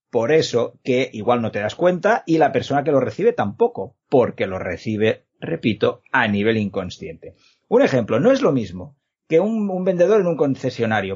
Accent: Spanish